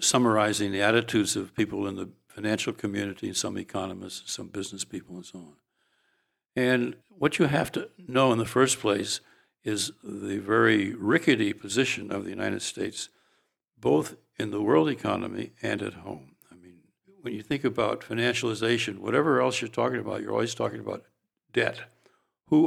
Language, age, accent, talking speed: English, 60-79, American, 165 wpm